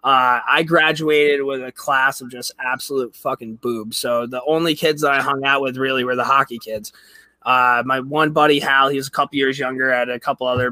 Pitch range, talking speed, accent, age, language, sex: 125-145 Hz, 230 wpm, American, 20-39, English, male